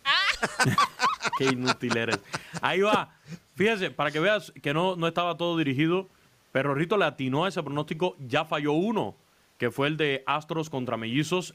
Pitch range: 125-155 Hz